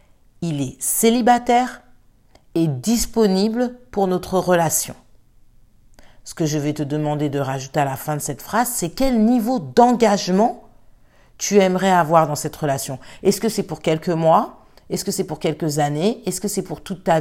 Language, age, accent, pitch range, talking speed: French, 50-69, French, 135-195 Hz, 175 wpm